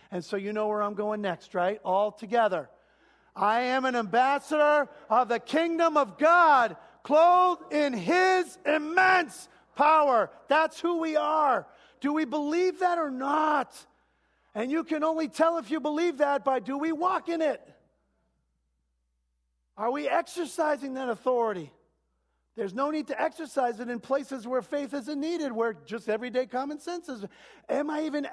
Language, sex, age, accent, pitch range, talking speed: English, male, 40-59, American, 215-310 Hz, 160 wpm